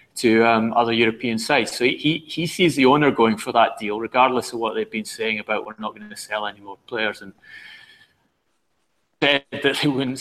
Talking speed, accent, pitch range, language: 205 wpm, British, 115-135 Hz, English